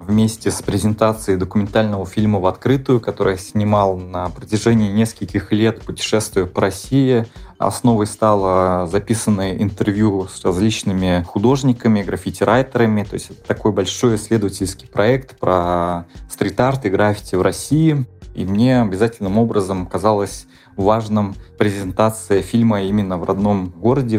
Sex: male